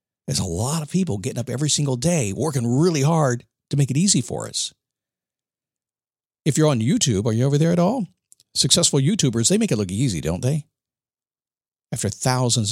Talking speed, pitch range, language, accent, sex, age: 190 wpm, 110-170 Hz, English, American, male, 50-69